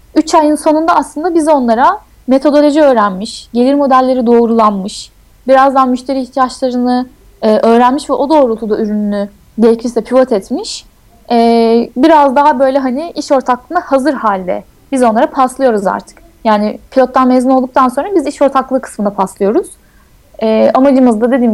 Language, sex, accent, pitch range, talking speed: Turkish, female, native, 210-265 Hz, 135 wpm